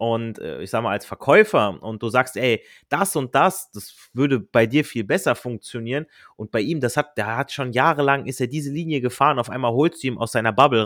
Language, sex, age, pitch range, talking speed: German, male, 30-49, 115-150 Hz, 230 wpm